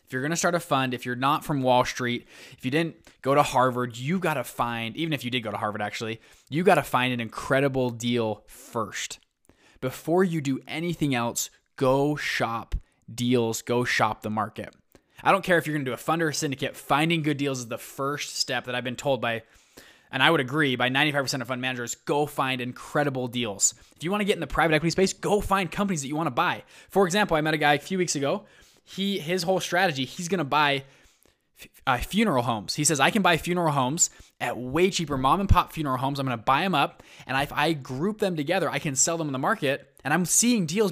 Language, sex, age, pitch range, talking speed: English, male, 20-39, 130-170 Hz, 240 wpm